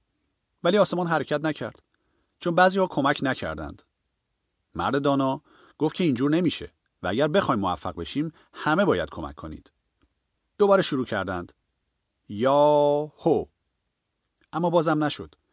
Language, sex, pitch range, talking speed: Persian, male, 95-160 Hz, 125 wpm